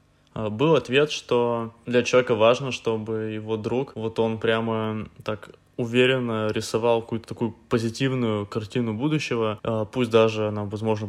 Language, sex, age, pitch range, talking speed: Russian, male, 20-39, 110-120 Hz, 130 wpm